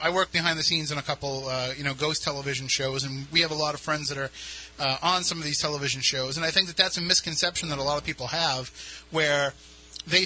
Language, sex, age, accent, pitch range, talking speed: English, male, 30-49, American, 145-185 Hz, 265 wpm